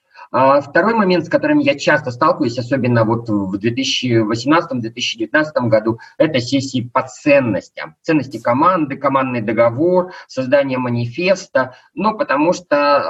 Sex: male